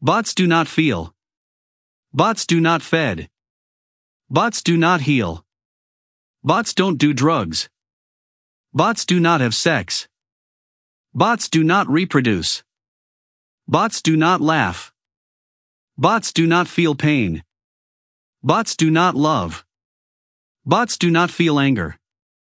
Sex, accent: male, American